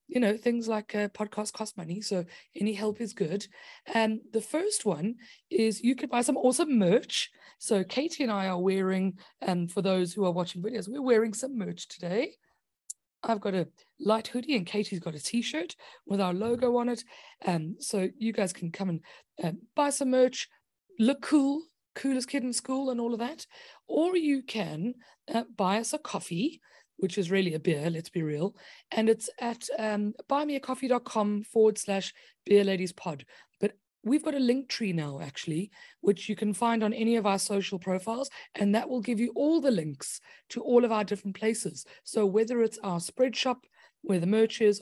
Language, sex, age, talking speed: English, female, 30-49, 195 wpm